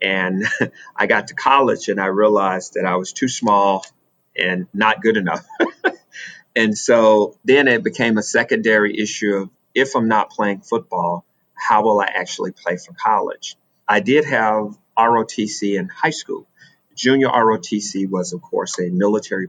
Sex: male